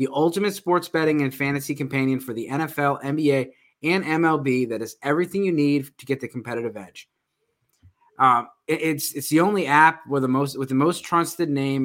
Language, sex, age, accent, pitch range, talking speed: English, male, 20-39, American, 135-160 Hz, 185 wpm